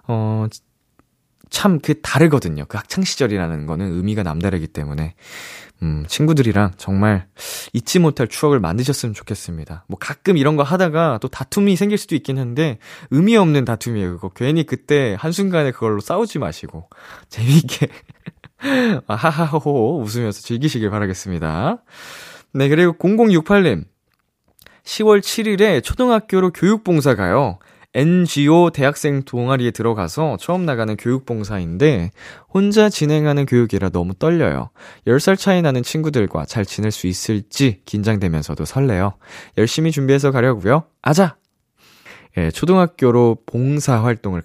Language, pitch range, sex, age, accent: Korean, 105-160 Hz, male, 20-39, native